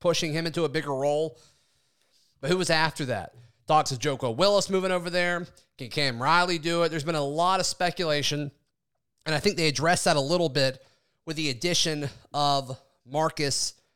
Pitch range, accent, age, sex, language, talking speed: 135-175 Hz, American, 30-49, male, English, 185 wpm